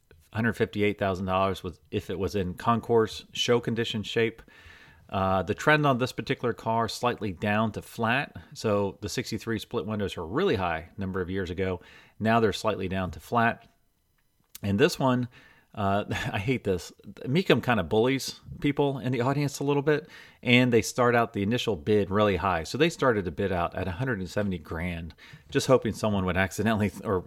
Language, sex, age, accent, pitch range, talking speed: English, male, 40-59, American, 95-115 Hz, 185 wpm